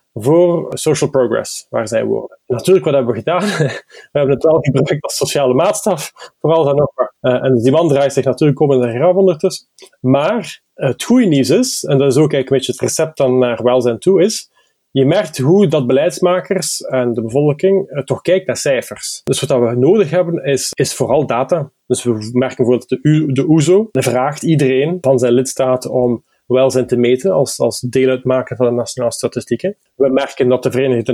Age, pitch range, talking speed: 30-49, 125-170 Hz, 205 wpm